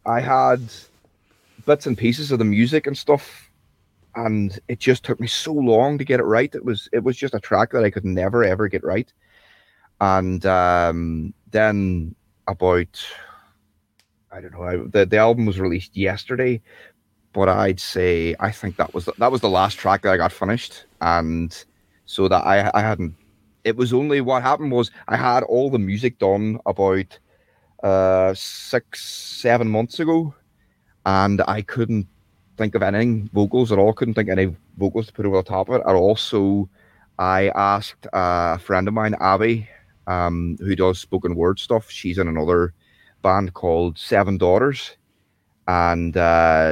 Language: English